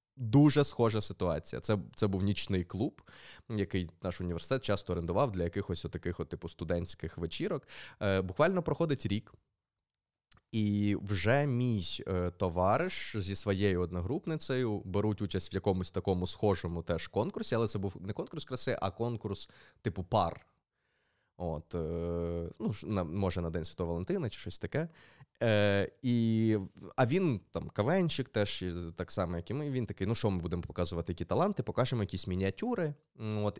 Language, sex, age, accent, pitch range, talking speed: Ukrainian, male, 20-39, native, 90-120 Hz, 155 wpm